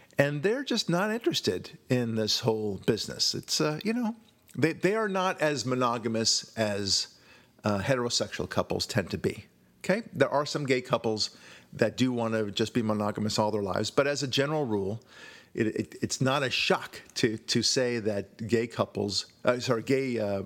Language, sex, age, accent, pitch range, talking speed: English, male, 40-59, American, 115-160 Hz, 185 wpm